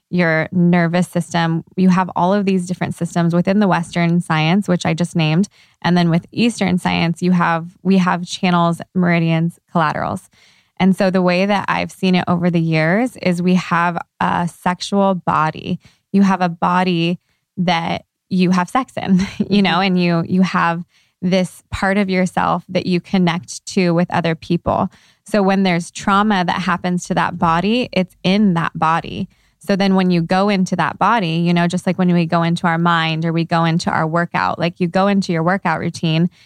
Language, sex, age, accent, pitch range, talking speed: English, female, 20-39, American, 170-190 Hz, 195 wpm